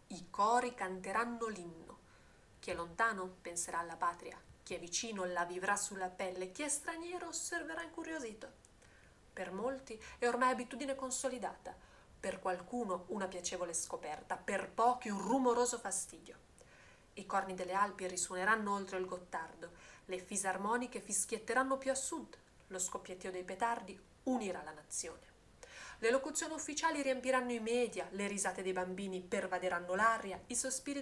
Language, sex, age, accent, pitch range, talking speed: Italian, female, 30-49, native, 185-250 Hz, 140 wpm